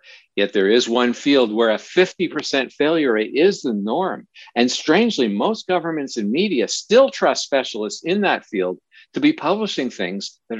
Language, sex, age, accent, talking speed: English, male, 60-79, American, 170 wpm